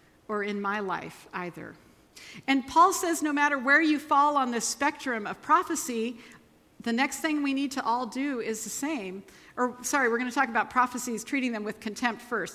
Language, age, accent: English, 50-69, American